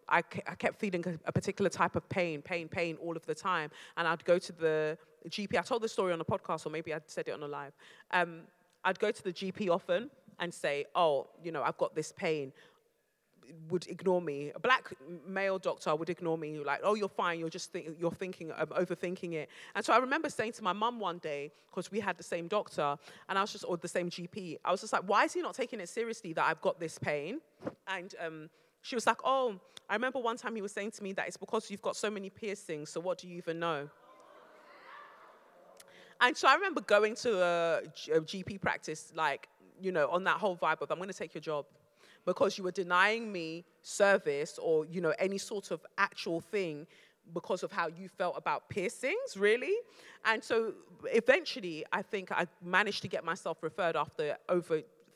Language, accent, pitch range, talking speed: English, British, 165-210 Hz, 220 wpm